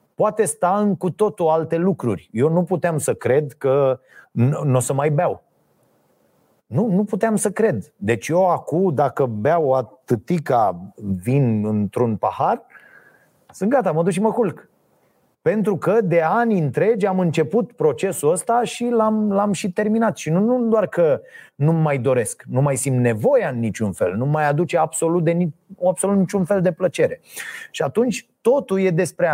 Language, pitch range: Romanian, 155-220 Hz